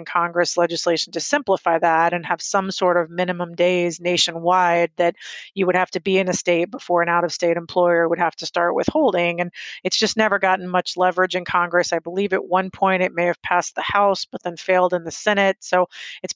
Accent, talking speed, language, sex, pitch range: American, 225 wpm, English, female, 170-185 Hz